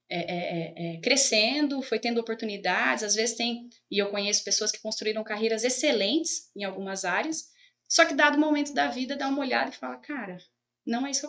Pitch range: 180-255 Hz